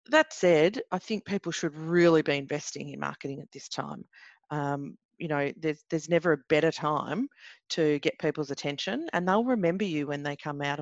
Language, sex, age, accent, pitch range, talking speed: English, female, 40-59, Australian, 150-195 Hz, 195 wpm